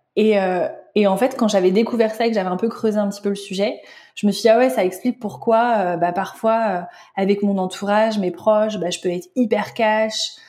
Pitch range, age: 195-225 Hz, 20-39